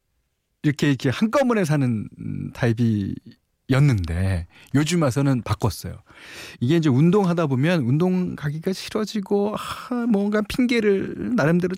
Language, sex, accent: Korean, male, native